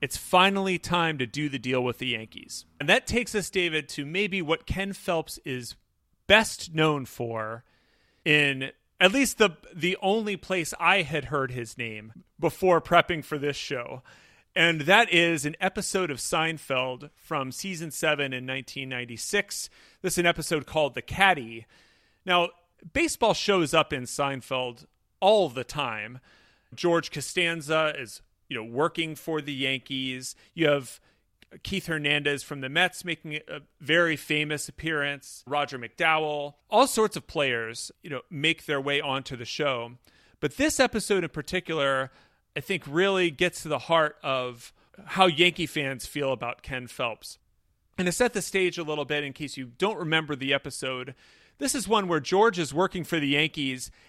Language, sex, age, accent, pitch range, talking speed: English, male, 30-49, American, 135-180 Hz, 165 wpm